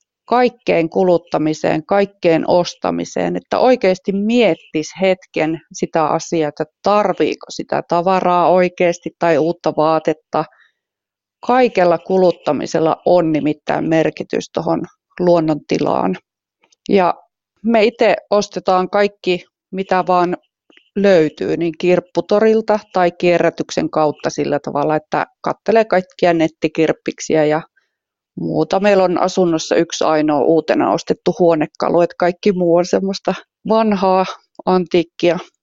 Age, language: 30-49, Finnish